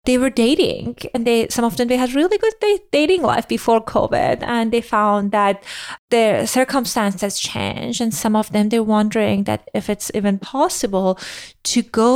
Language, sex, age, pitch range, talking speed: English, female, 30-49, 200-255 Hz, 180 wpm